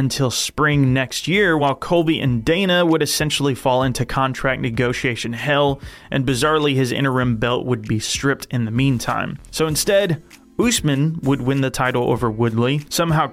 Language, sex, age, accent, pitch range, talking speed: English, male, 30-49, American, 125-155 Hz, 160 wpm